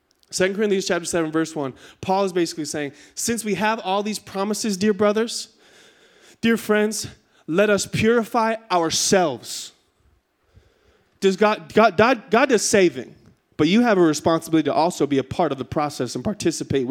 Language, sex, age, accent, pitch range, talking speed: English, male, 20-39, American, 150-220 Hz, 160 wpm